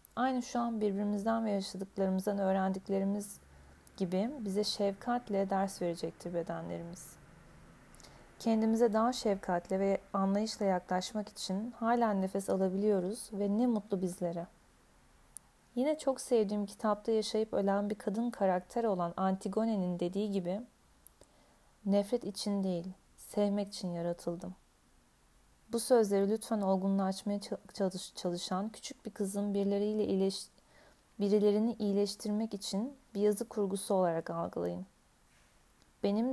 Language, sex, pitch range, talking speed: Turkish, female, 185-215 Hz, 105 wpm